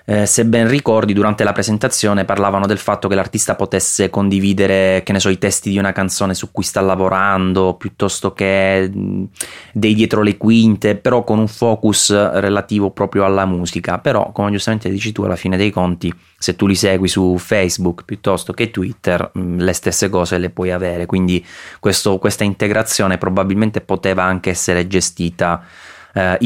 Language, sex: Italian, male